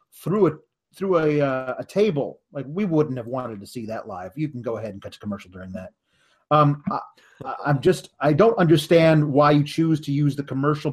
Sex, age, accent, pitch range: male, 30-49, American, 145-195 Hz